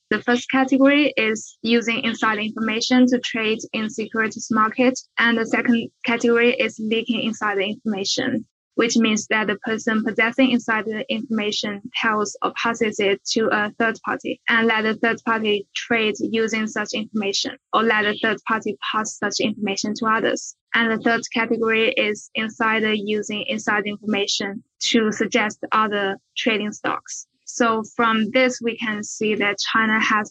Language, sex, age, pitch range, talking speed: English, female, 10-29, 215-235 Hz, 155 wpm